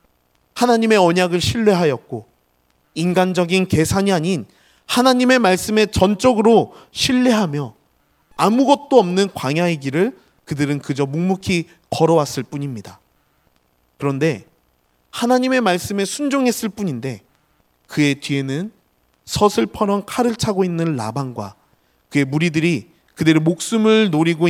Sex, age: male, 30-49